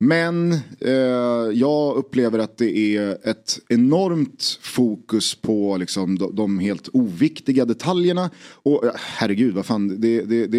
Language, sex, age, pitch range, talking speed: Swedish, male, 30-49, 105-130 Hz, 135 wpm